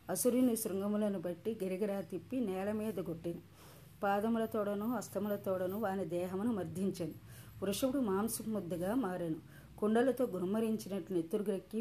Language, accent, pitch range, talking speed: Telugu, native, 180-215 Hz, 95 wpm